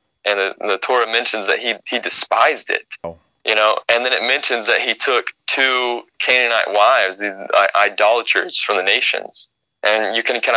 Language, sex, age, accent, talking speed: English, male, 20-39, American, 185 wpm